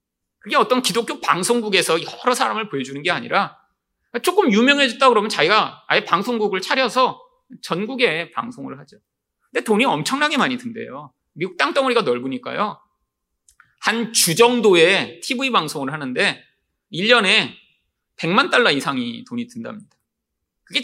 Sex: male